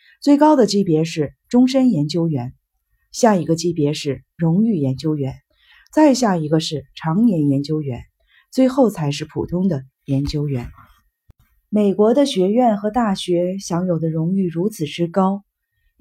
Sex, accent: female, native